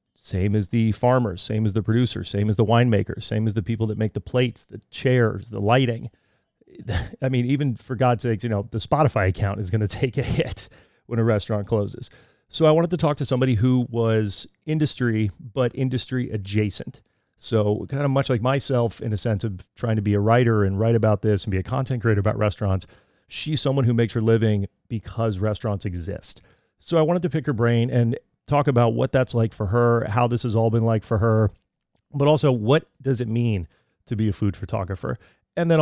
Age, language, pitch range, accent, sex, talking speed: 30-49, English, 105-125 Hz, American, male, 215 wpm